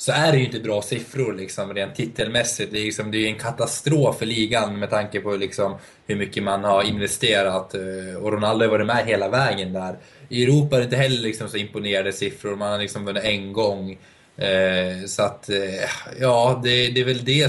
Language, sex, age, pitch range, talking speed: Swedish, male, 20-39, 100-130 Hz, 200 wpm